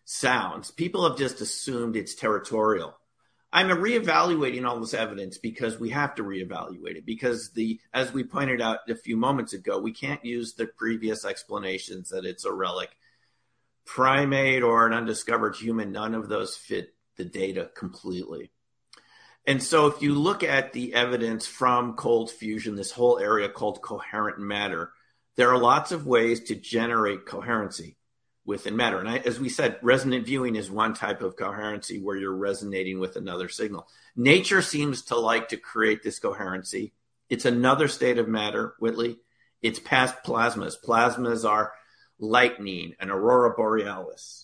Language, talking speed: English, 160 wpm